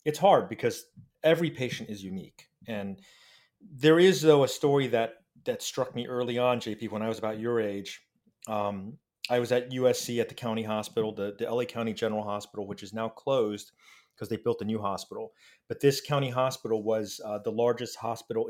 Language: English